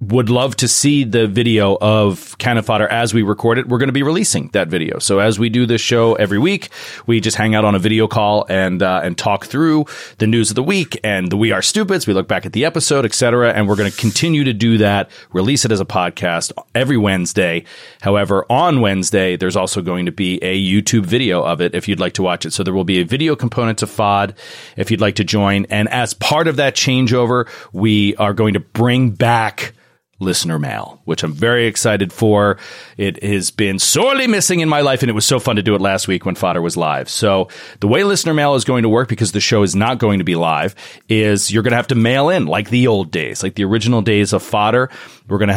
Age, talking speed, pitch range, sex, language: 30-49, 245 wpm, 100-125 Hz, male, English